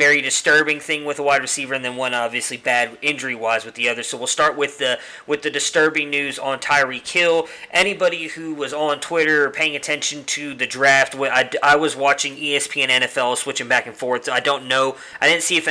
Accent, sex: American, male